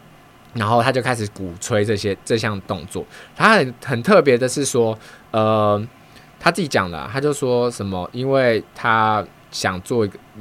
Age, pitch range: 20-39, 100-125 Hz